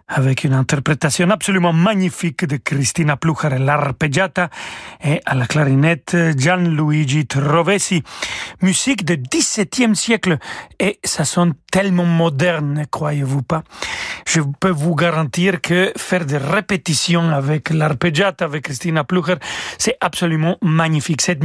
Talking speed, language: 125 wpm, French